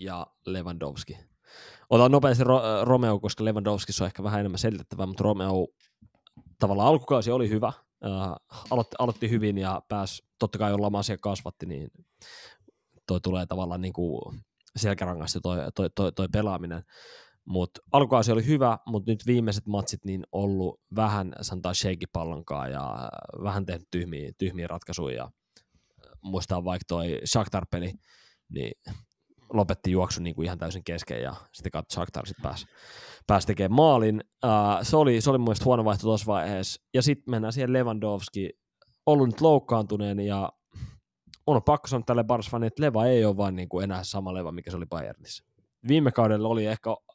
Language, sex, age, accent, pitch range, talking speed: Finnish, male, 20-39, native, 90-115 Hz, 150 wpm